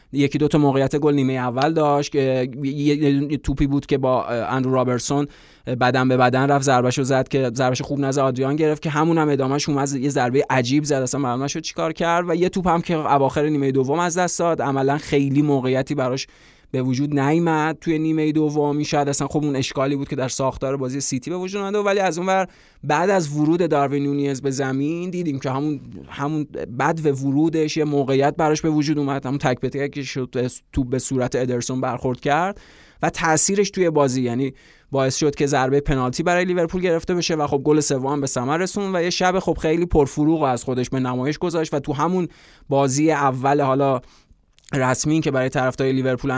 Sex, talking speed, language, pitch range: male, 200 wpm, Persian, 130-155 Hz